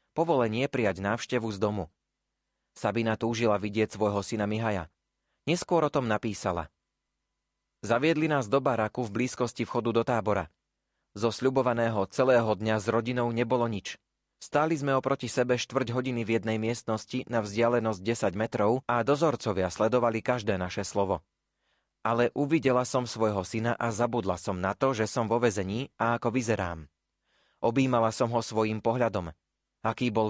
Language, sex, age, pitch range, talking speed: Slovak, male, 30-49, 100-125 Hz, 150 wpm